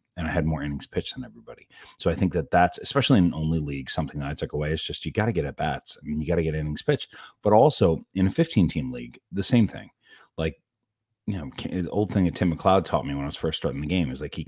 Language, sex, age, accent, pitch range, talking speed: English, male, 30-49, American, 80-100 Hz, 280 wpm